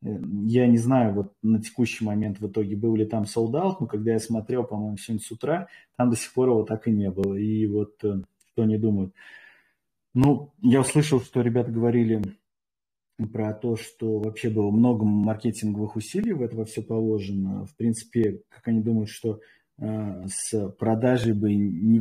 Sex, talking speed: male, 170 wpm